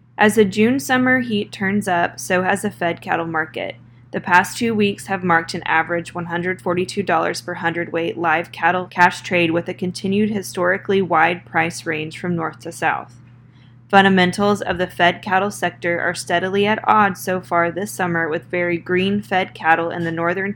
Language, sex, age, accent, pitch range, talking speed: English, female, 20-39, American, 170-195 Hz, 180 wpm